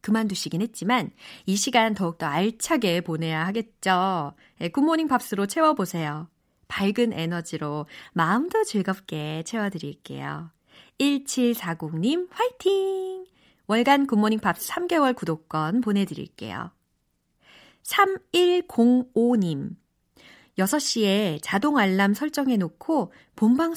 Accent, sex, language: native, female, Korean